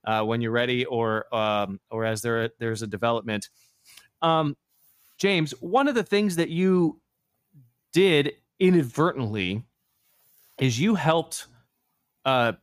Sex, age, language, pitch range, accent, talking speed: male, 30-49, English, 120-150 Hz, American, 130 wpm